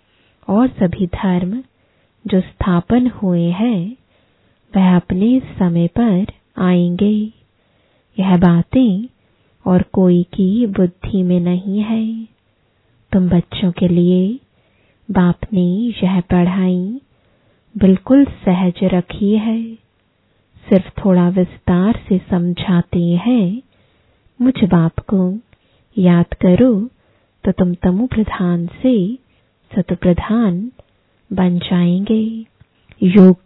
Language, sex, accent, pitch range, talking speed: English, female, Indian, 180-220 Hz, 90 wpm